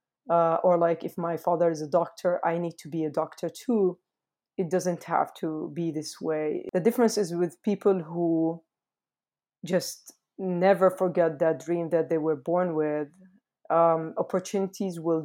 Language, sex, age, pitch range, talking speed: English, female, 20-39, 170-200 Hz, 165 wpm